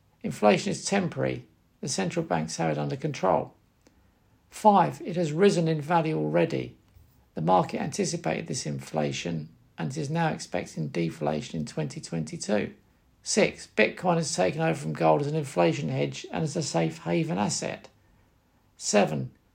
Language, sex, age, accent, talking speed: English, male, 50-69, British, 145 wpm